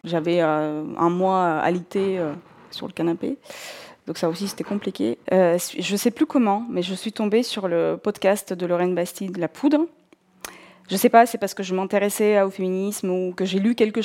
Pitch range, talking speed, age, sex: 180-215 Hz, 190 wpm, 20-39, female